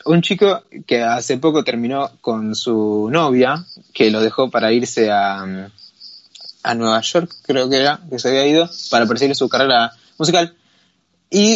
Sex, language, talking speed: male, Spanish, 160 wpm